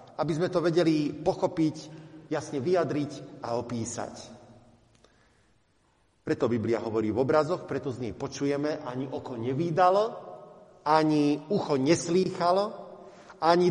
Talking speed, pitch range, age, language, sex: 110 wpm, 120-180 Hz, 50-69, Slovak, male